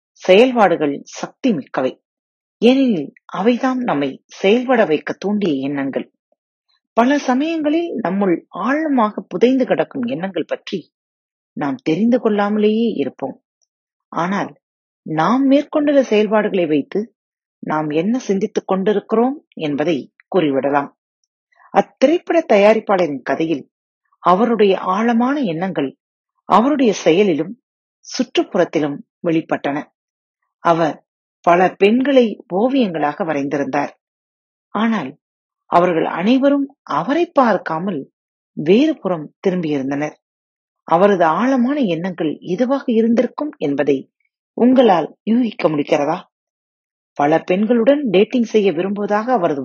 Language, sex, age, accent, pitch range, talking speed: Tamil, female, 30-49, native, 165-255 Hz, 85 wpm